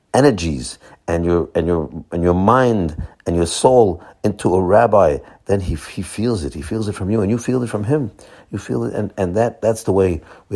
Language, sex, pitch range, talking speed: English, male, 85-110 Hz, 225 wpm